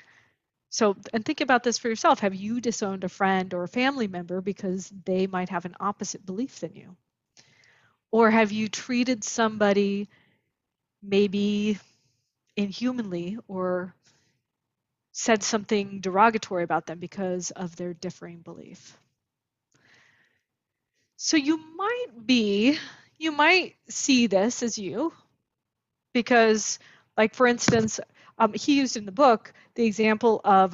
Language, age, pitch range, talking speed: English, 20-39, 190-235 Hz, 130 wpm